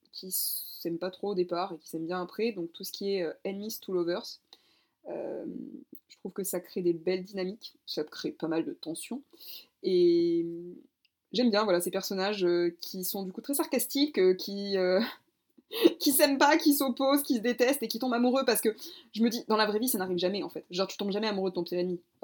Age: 20-39